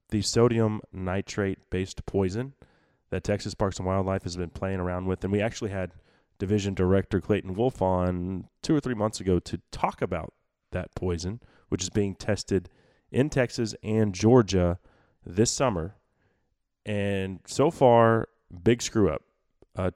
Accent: American